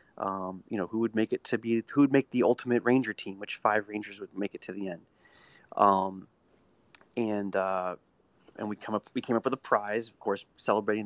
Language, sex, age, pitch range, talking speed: English, male, 30-49, 105-125 Hz, 220 wpm